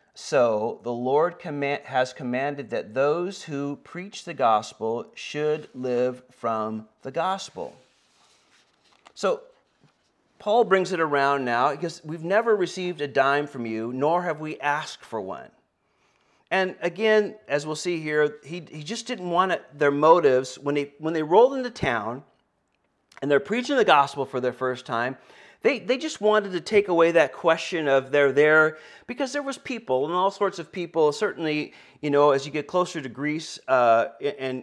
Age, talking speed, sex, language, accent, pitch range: 40-59, 170 wpm, male, English, American, 130-175 Hz